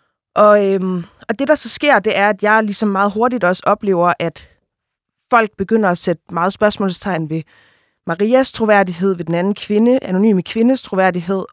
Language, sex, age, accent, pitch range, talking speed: Danish, female, 20-39, native, 185-225 Hz, 170 wpm